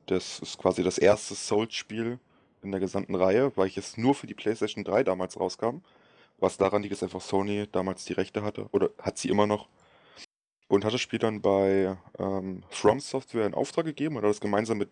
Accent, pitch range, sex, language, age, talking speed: German, 95-120 Hz, male, German, 20-39, 205 wpm